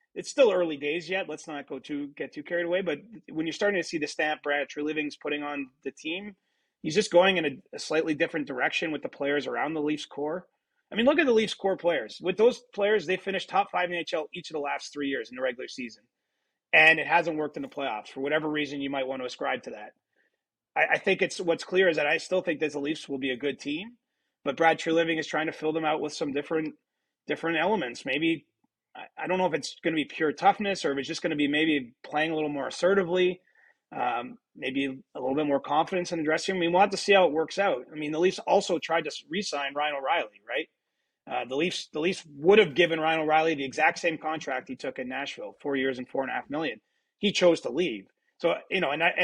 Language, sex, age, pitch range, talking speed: English, male, 30-49, 145-185 Hz, 260 wpm